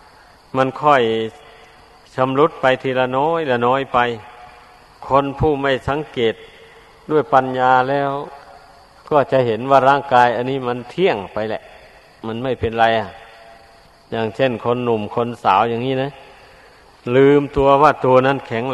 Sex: male